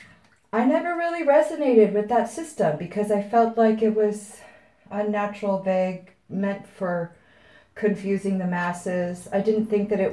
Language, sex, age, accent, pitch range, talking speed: English, female, 30-49, American, 155-205 Hz, 150 wpm